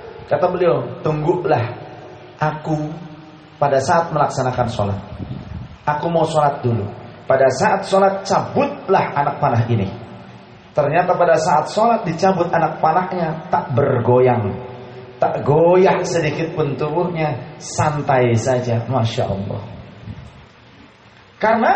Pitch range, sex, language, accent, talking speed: 120-160 Hz, male, Indonesian, native, 105 wpm